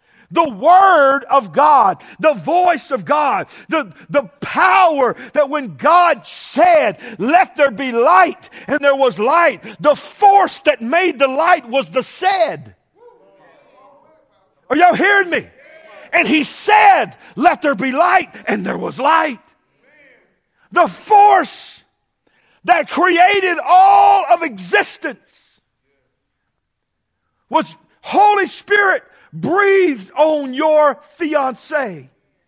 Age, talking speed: 50-69, 115 wpm